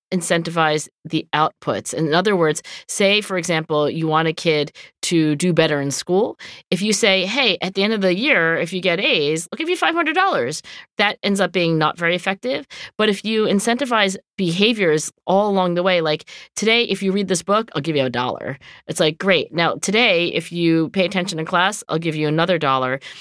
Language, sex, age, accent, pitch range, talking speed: English, female, 40-59, American, 160-215 Hz, 205 wpm